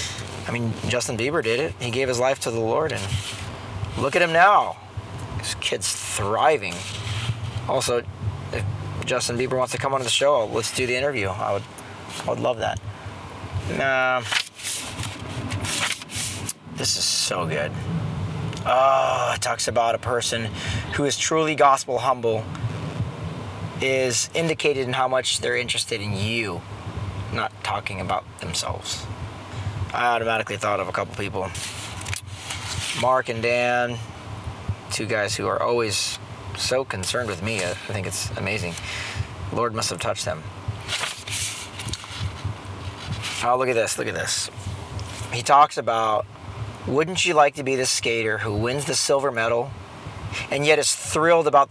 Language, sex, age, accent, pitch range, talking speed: English, male, 30-49, American, 100-125 Hz, 145 wpm